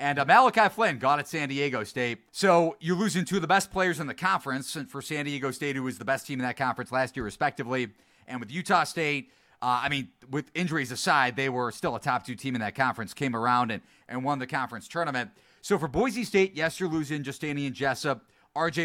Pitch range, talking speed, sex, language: 130-165 Hz, 240 wpm, male, English